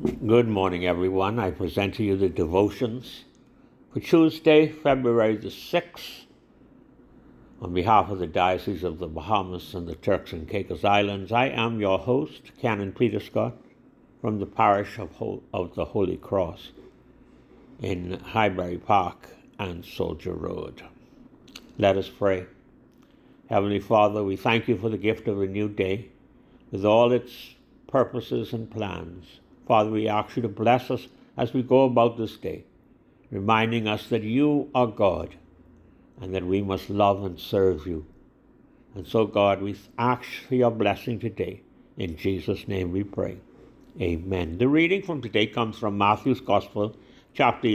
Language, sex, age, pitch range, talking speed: English, male, 60-79, 95-120 Hz, 150 wpm